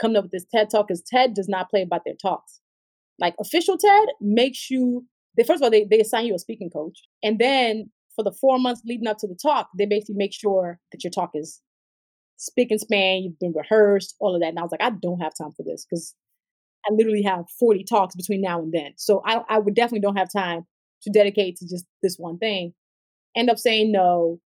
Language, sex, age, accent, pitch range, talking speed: English, female, 20-39, American, 185-230 Hz, 235 wpm